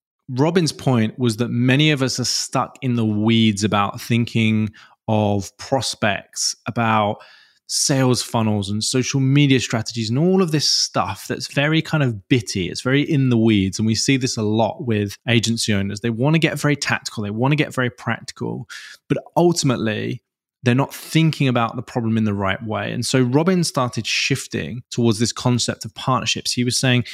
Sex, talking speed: male, 185 wpm